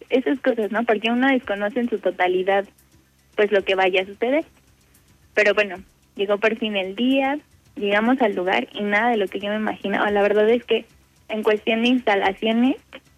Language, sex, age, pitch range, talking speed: Spanish, female, 20-39, 200-235 Hz, 185 wpm